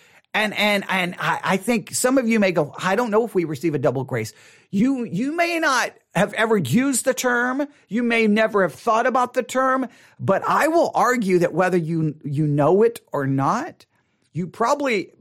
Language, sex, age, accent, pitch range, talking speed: English, male, 40-59, American, 155-230 Hz, 200 wpm